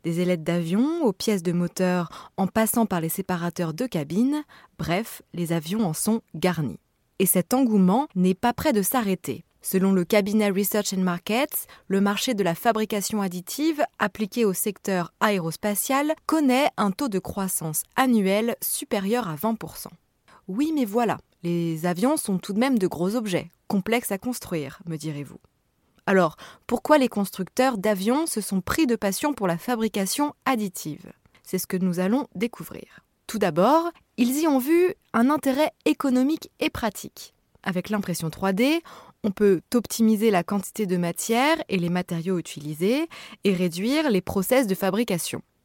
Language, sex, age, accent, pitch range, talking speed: French, female, 20-39, French, 180-245 Hz, 160 wpm